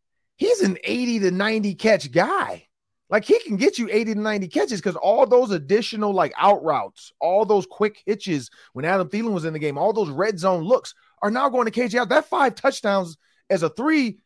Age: 30-49